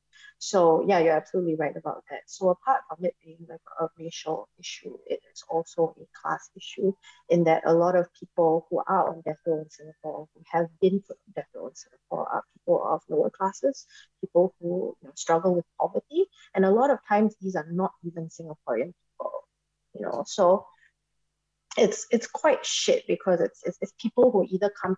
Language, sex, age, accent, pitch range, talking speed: English, female, 20-39, Malaysian, 160-200 Hz, 195 wpm